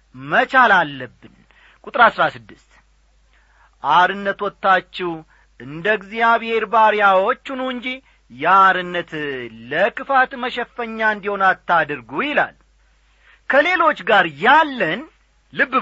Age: 40-59